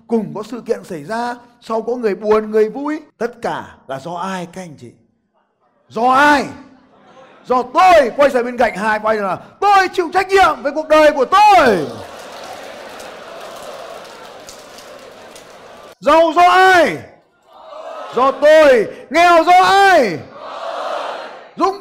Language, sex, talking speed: Vietnamese, male, 140 wpm